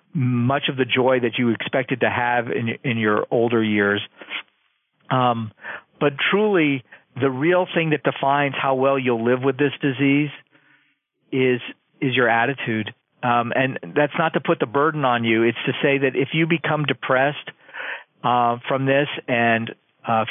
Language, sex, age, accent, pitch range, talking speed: English, male, 50-69, American, 120-150 Hz, 165 wpm